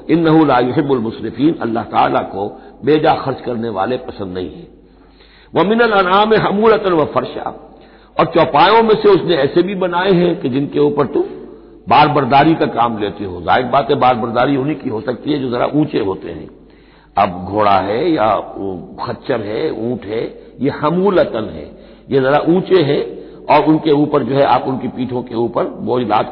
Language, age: Hindi, 60-79